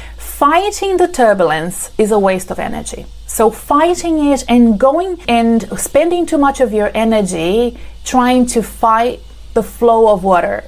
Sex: female